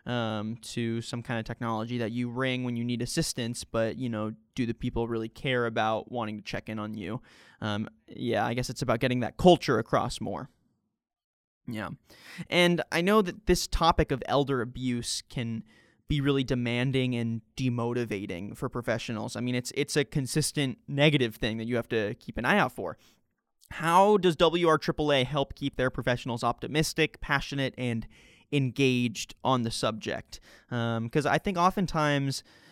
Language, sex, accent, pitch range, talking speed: English, male, American, 120-150 Hz, 170 wpm